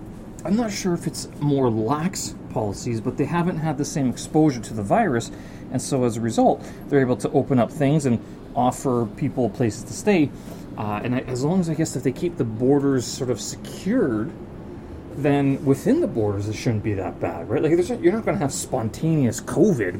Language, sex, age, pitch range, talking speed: English, male, 30-49, 110-150 Hz, 215 wpm